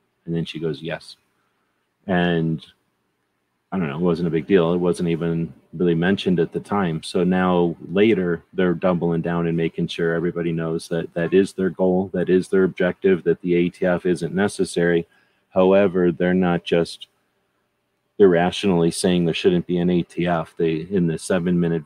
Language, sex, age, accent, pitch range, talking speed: English, male, 30-49, American, 85-90 Hz, 170 wpm